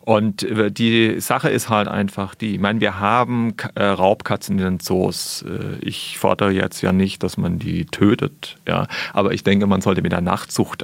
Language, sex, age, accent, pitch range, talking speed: German, male, 40-59, German, 100-120 Hz, 185 wpm